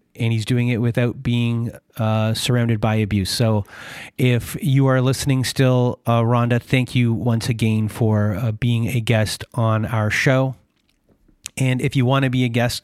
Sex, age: male, 30-49